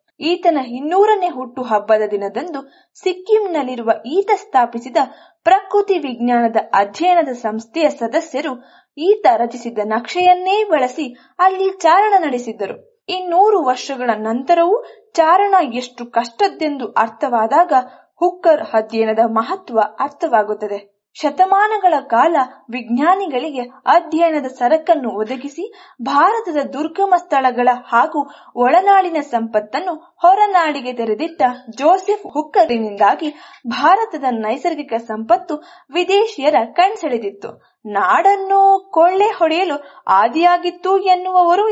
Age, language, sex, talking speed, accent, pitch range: 20-39, Kannada, female, 80 wpm, native, 245-370 Hz